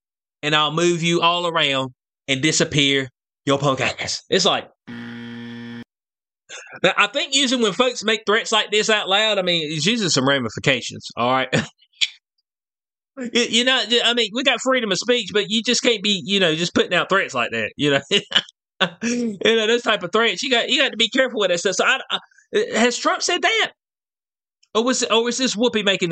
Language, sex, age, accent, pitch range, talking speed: English, male, 20-39, American, 190-275 Hz, 200 wpm